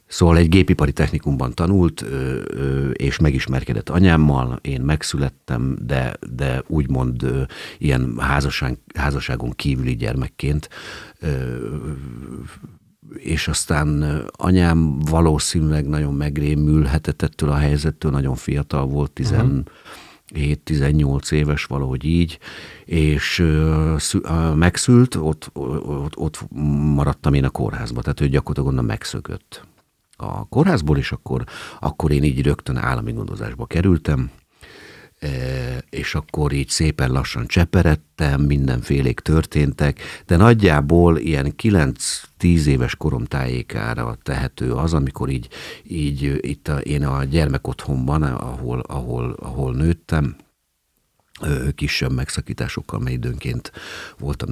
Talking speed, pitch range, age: 100 wpm, 70-80 Hz, 50-69